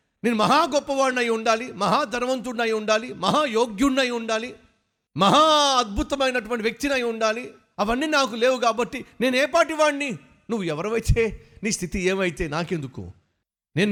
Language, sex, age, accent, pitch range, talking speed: Telugu, male, 50-69, native, 180-260 Hz, 120 wpm